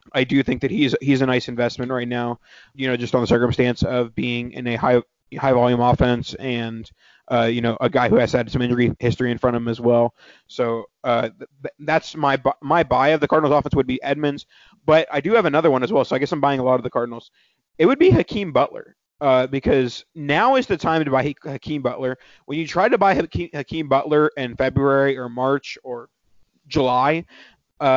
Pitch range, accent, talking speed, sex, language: 125-145 Hz, American, 220 wpm, male, English